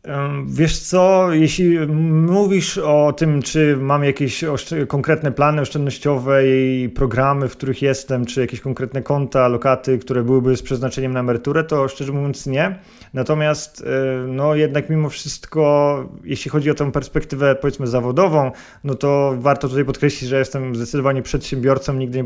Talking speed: 150 wpm